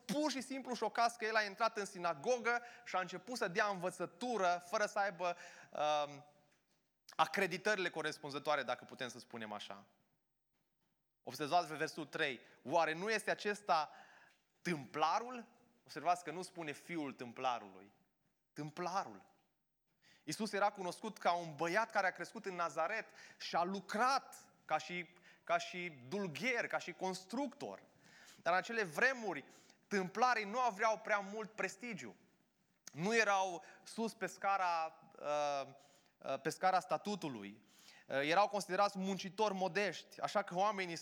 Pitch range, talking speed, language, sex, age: 165-220 Hz, 130 wpm, Romanian, male, 20-39